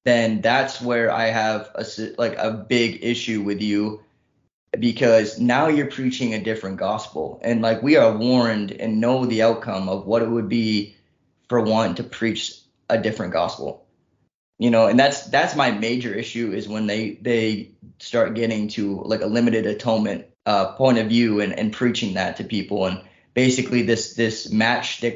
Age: 20-39